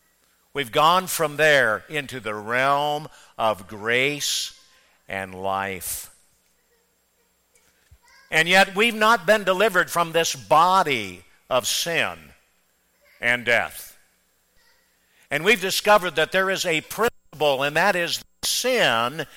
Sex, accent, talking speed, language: male, American, 110 wpm, English